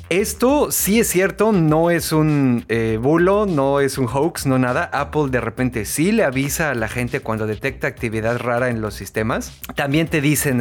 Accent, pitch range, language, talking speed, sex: Mexican, 120-160 Hz, Spanish, 190 wpm, male